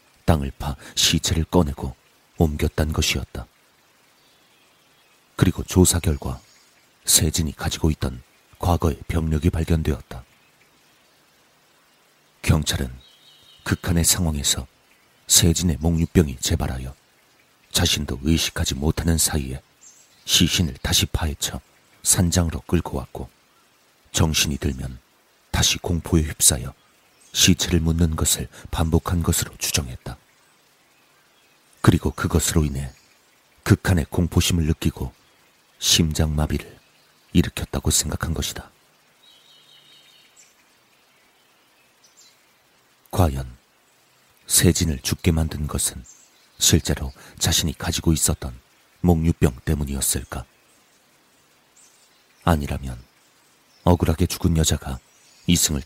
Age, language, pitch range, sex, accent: 40-59, Korean, 70-85 Hz, male, native